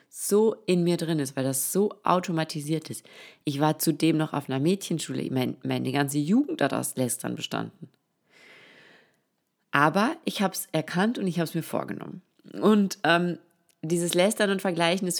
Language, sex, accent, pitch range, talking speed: German, female, German, 155-195 Hz, 165 wpm